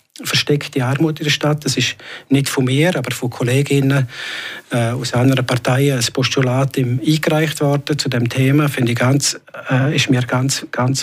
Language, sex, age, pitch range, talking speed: German, male, 50-69, 125-145 Hz, 180 wpm